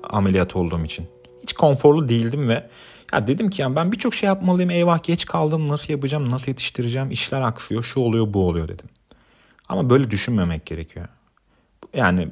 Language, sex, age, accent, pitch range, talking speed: Turkish, male, 40-59, native, 100-135 Hz, 165 wpm